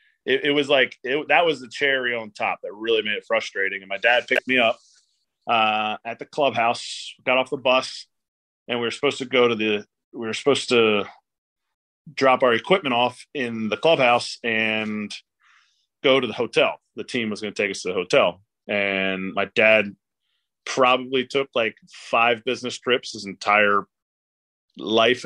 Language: English